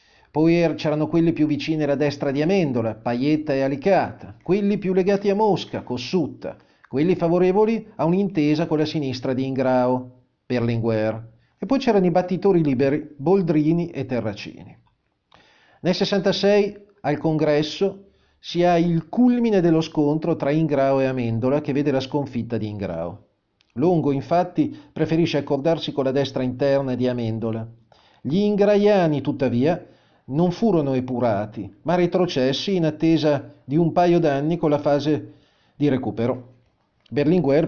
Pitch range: 130-180 Hz